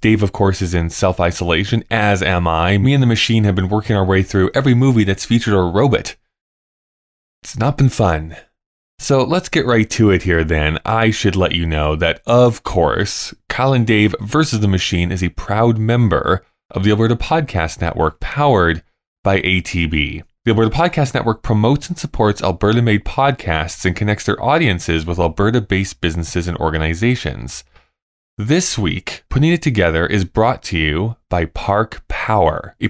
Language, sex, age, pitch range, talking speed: English, male, 20-39, 85-115 Hz, 175 wpm